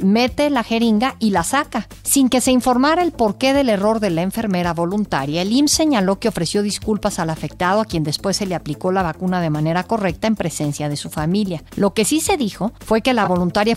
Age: 50-69